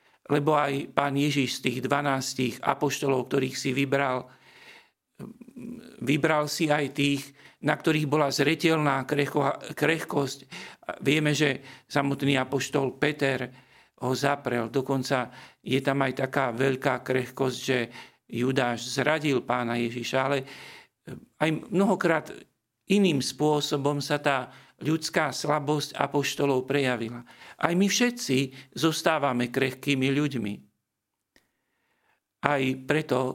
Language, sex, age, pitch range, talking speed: Slovak, male, 50-69, 130-150 Hz, 105 wpm